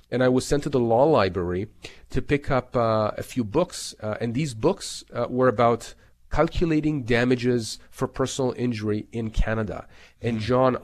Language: English